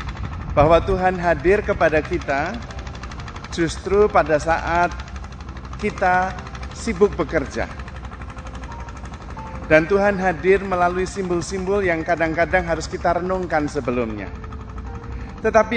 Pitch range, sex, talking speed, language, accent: 130-180 Hz, male, 90 wpm, Indonesian, native